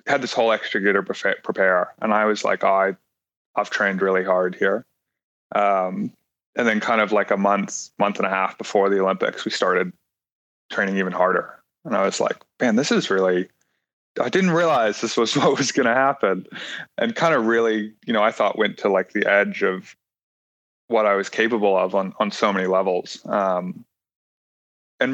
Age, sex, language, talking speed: 20-39, male, English, 195 wpm